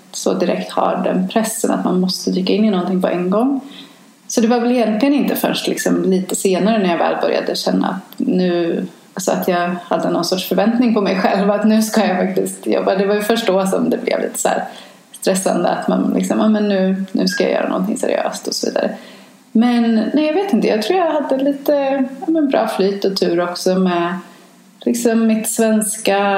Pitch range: 190-225 Hz